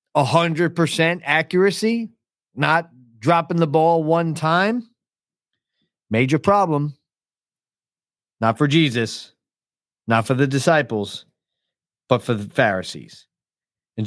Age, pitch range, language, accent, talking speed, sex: 40-59, 120-155 Hz, English, American, 90 wpm, male